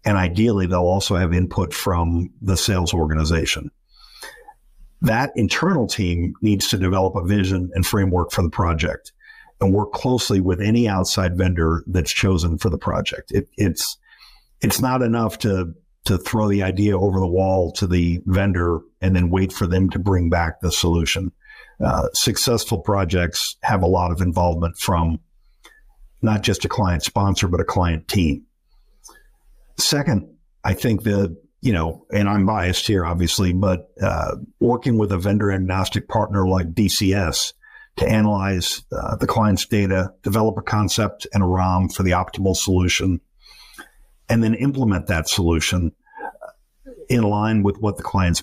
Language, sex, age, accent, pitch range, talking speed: English, male, 50-69, American, 90-105 Hz, 155 wpm